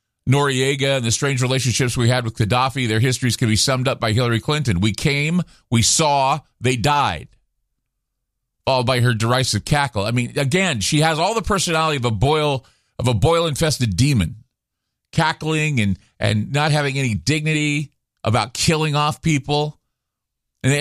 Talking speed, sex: 165 wpm, male